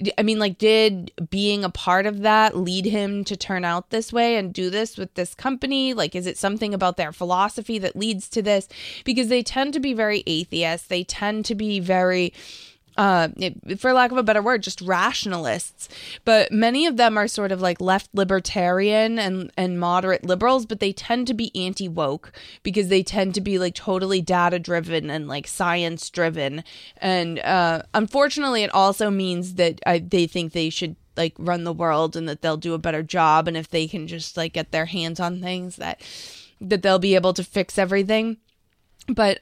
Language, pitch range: English, 175-210 Hz